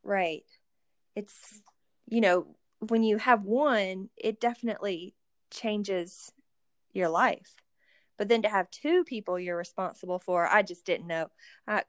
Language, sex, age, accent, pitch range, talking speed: English, female, 20-39, American, 185-225 Hz, 135 wpm